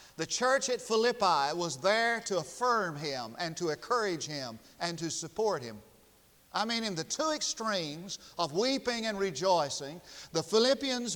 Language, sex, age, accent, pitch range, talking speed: English, male, 50-69, American, 170-235 Hz, 155 wpm